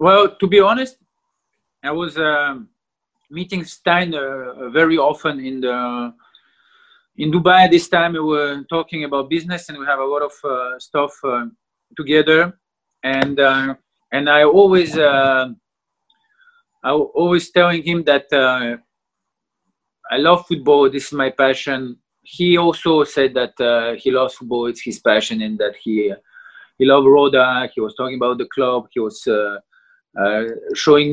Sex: male